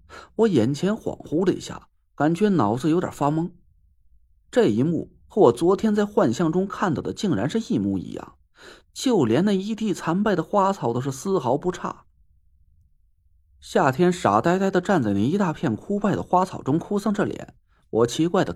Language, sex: Chinese, male